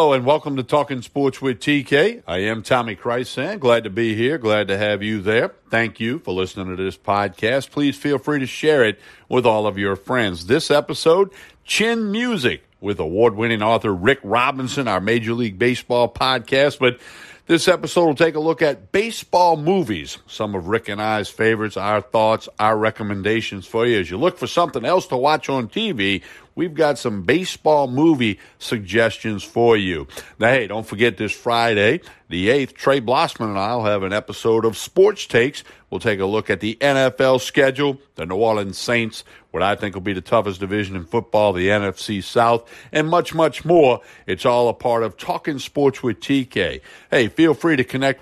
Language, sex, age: English, male, 50-69